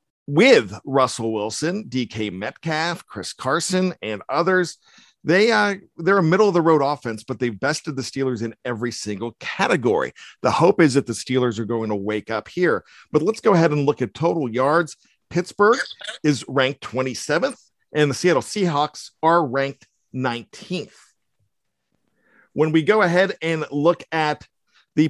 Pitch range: 130-175 Hz